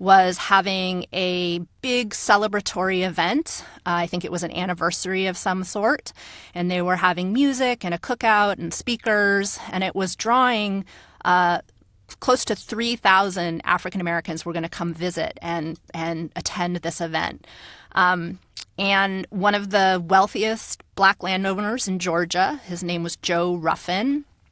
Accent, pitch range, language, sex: American, 180-215 Hz, English, female